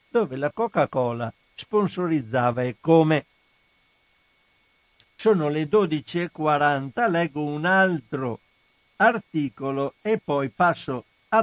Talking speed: 90 wpm